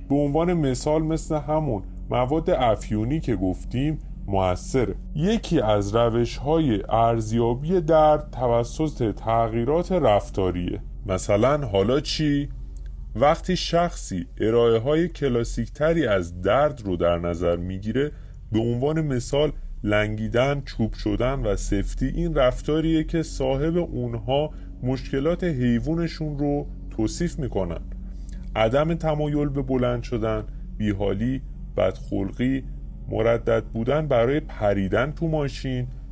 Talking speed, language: 105 wpm, Persian